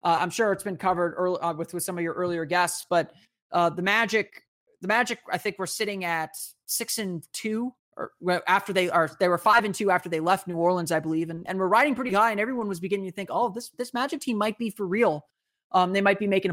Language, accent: English, American